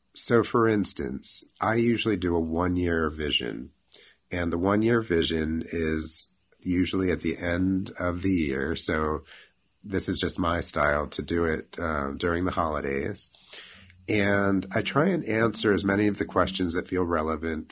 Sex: male